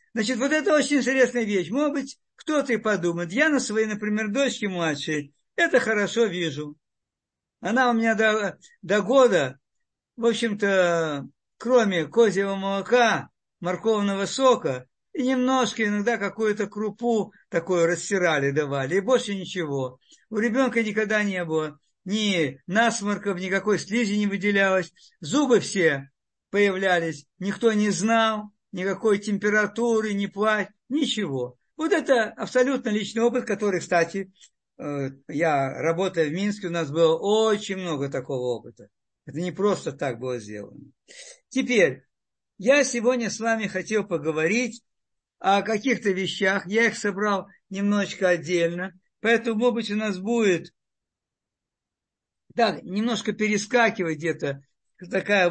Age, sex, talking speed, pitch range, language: 50-69, male, 125 wpm, 175-230 Hz, Russian